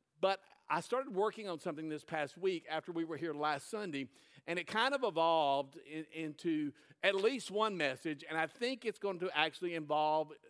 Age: 50-69